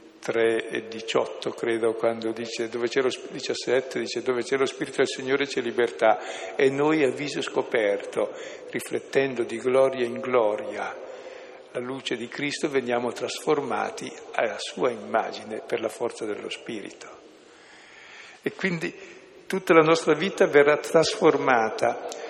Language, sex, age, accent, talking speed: Italian, male, 60-79, native, 135 wpm